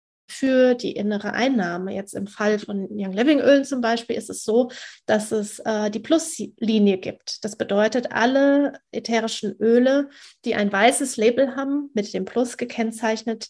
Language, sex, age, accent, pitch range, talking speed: German, female, 30-49, German, 210-255 Hz, 160 wpm